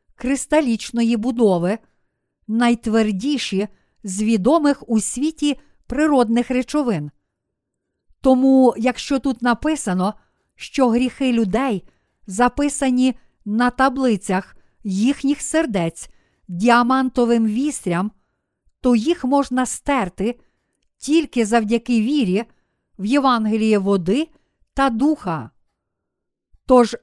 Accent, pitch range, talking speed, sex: native, 215-270 Hz, 80 wpm, female